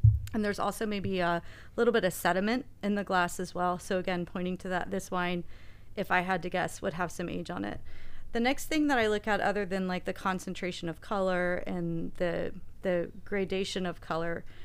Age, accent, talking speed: 30-49, American, 215 wpm